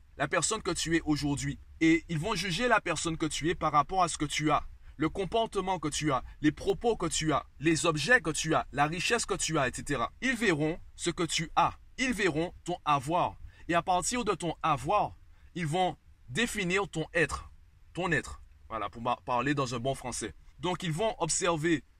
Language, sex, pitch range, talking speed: French, male, 135-170 Hz, 210 wpm